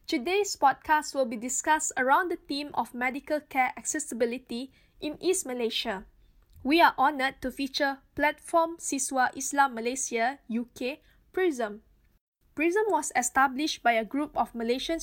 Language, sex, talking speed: English, female, 135 wpm